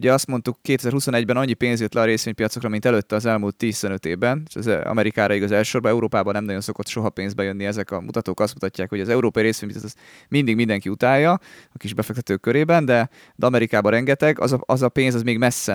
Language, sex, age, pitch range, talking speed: Hungarian, male, 30-49, 105-130 Hz, 205 wpm